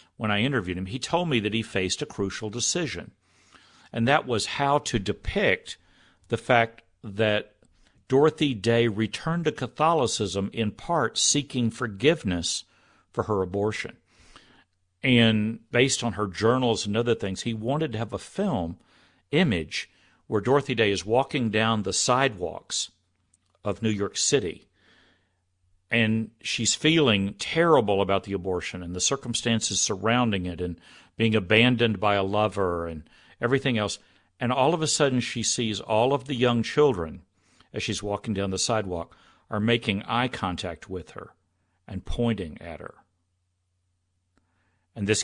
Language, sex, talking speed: English, male, 150 wpm